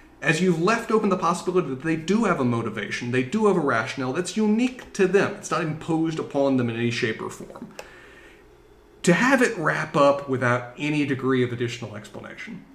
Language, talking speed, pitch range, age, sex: English, 200 wpm, 130-205 Hz, 30-49, male